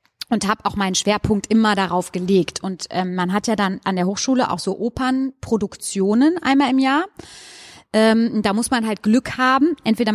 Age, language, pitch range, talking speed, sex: 30-49, German, 190-230 Hz, 185 wpm, female